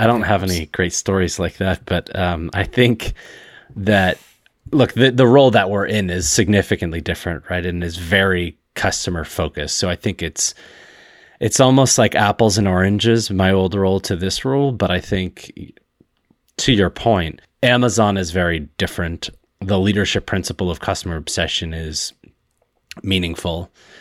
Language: English